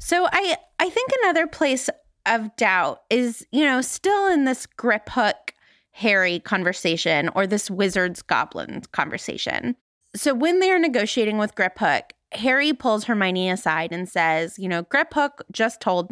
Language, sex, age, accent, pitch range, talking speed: English, female, 20-39, American, 190-260 Hz, 140 wpm